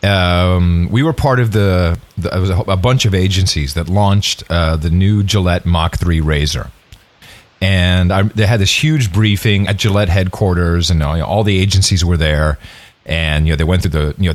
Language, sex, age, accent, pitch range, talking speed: English, male, 40-59, American, 80-105 Hz, 215 wpm